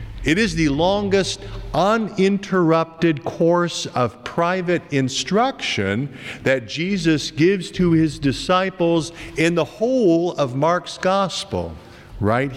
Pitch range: 120-180 Hz